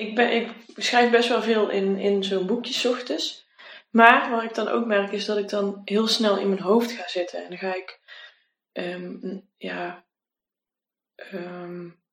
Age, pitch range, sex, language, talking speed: 20-39, 180-210 Hz, female, Dutch, 180 wpm